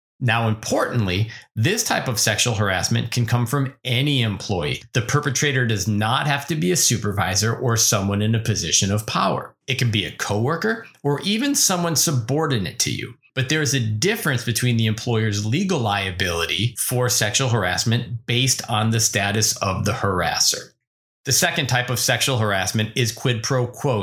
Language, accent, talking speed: English, American, 170 wpm